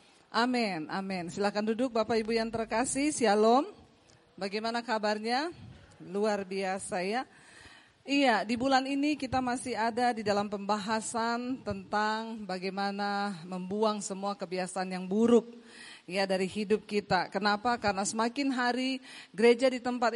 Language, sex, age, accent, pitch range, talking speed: English, female, 40-59, Indonesian, 200-245 Hz, 125 wpm